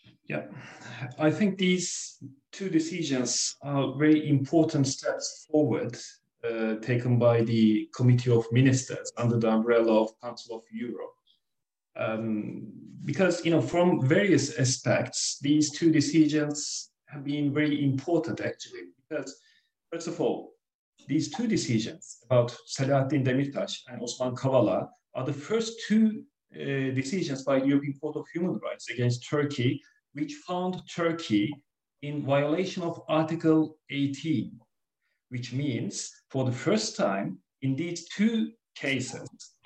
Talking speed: 130 wpm